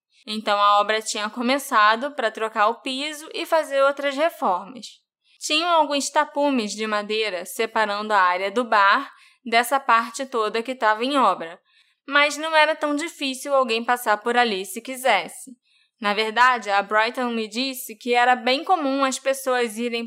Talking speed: 160 wpm